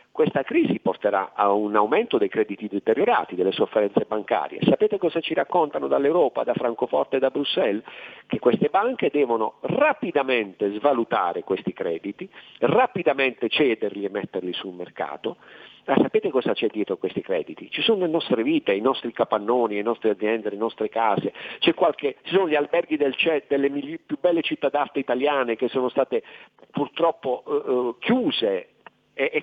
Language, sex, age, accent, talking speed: Italian, male, 50-69, native, 155 wpm